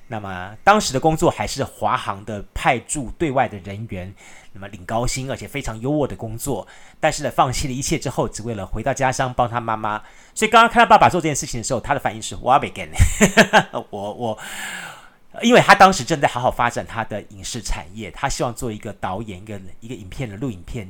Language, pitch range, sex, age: Chinese, 110-150 Hz, male, 30-49